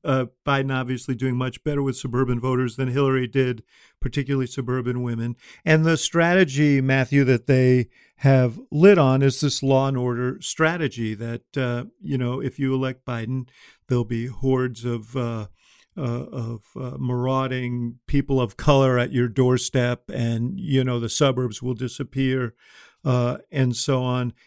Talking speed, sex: 155 wpm, male